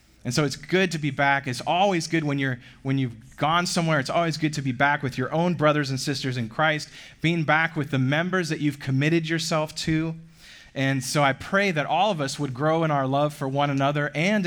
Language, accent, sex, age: English, American, male, 30-49